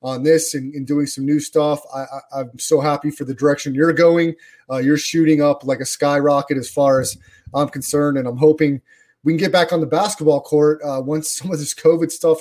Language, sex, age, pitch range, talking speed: English, male, 20-39, 140-175 Hz, 220 wpm